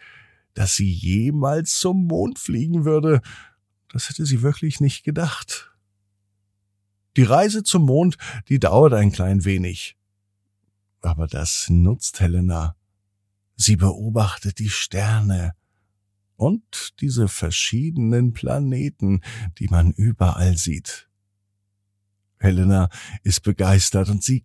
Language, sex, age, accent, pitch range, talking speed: German, male, 50-69, German, 100-135 Hz, 105 wpm